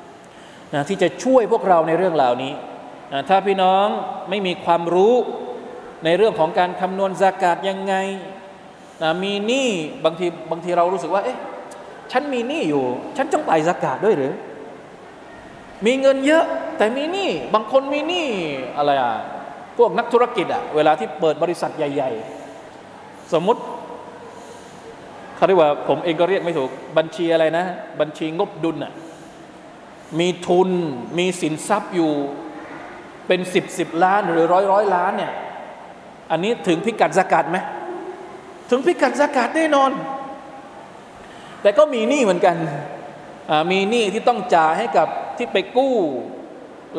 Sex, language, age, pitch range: male, Thai, 20-39, 170-235 Hz